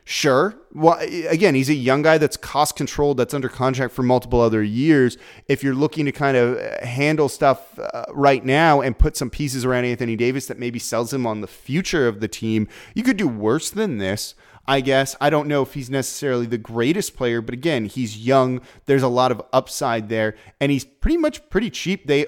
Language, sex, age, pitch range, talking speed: English, male, 30-49, 115-145 Hz, 210 wpm